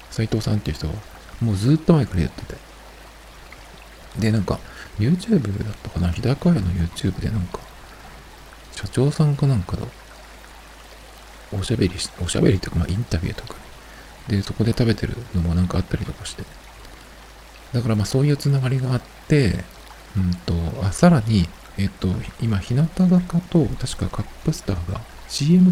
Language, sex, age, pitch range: Japanese, male, 50-69, 90-125 Hz